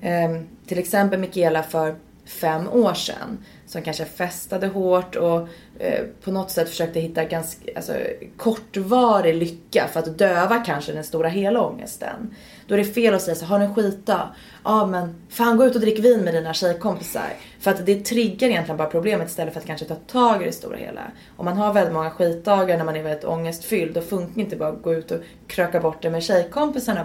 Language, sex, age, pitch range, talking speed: Swedish, female, 20-39, 165-210 Hz, 205 wpm